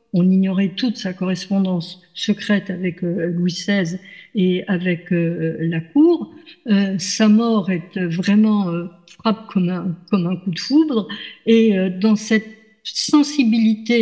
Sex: female